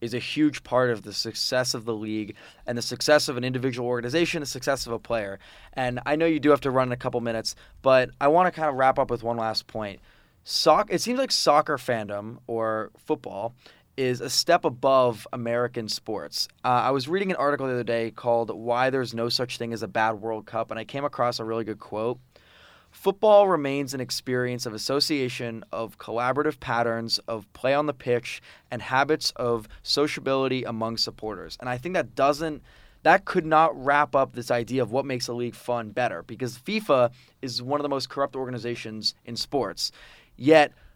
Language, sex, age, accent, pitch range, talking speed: English, male, 20-39, American, 115-145 Hz, 200 wpm